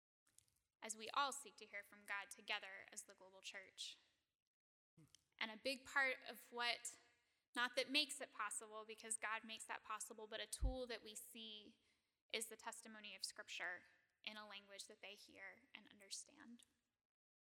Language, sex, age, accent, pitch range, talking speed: English, female, 10-29, American, 220-255 Hz, 165 wpm